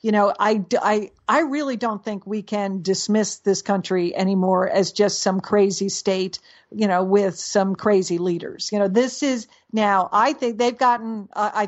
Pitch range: 190-220 Hz